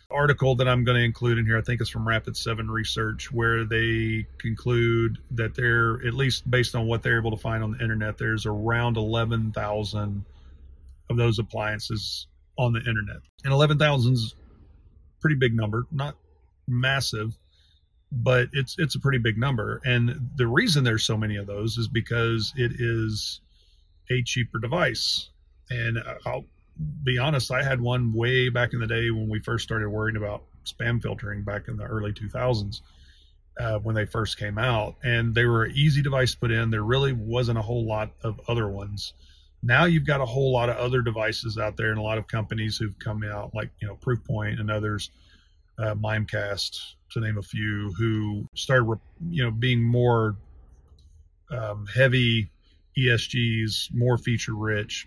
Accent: American